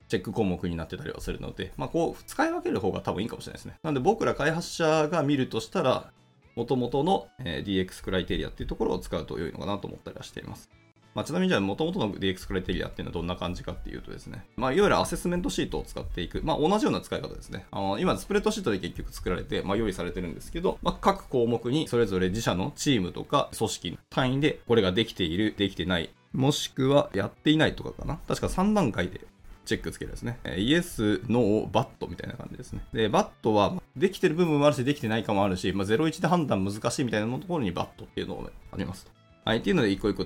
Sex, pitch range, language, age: male, 95-150 Hz, Japanese, 20-39